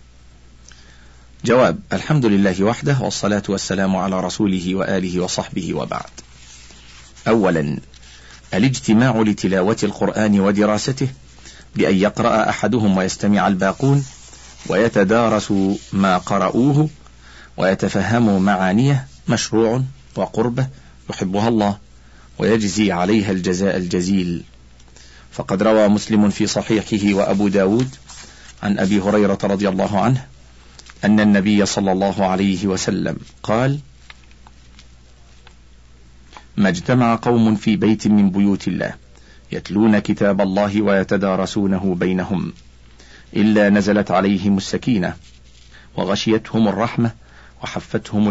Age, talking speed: 40-59, 90 wpm